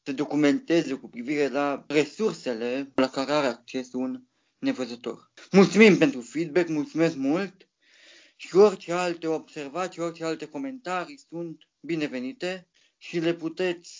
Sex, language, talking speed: male, Romanian, 125 wpm